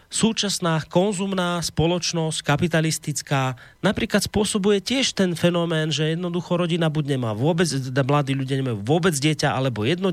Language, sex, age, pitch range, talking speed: Slovak, male, 30-49, 120-175 Hz, 130 wpm